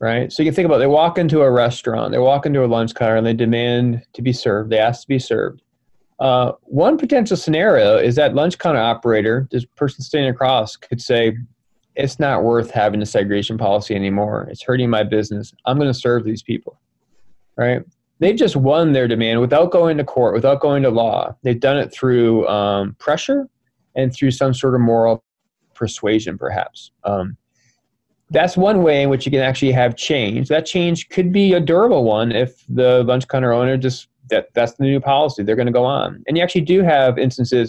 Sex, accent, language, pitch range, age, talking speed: male, American, English, 115-140 Hz, 20-39, 205 wpm